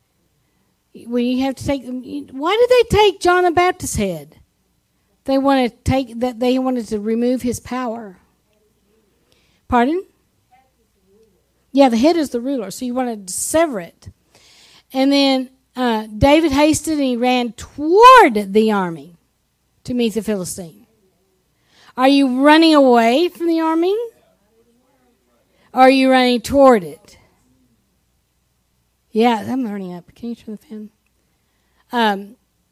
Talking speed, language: 135 wpm, English